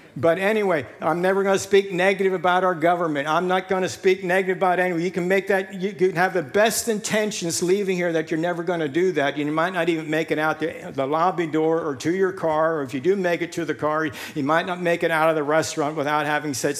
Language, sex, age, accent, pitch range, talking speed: English, male, 60-79, American, 130-175 Hz, 265 wpm